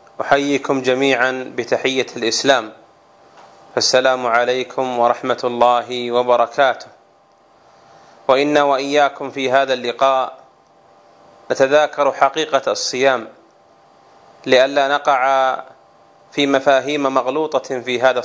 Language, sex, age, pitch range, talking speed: Arabic, male, 30-49, 120-145 Hz, 80 wpm